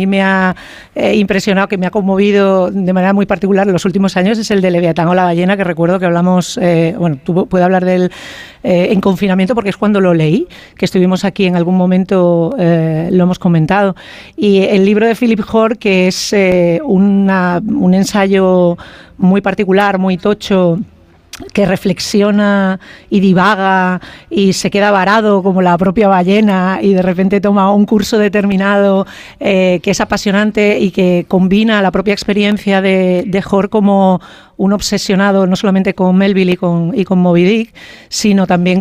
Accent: Spanish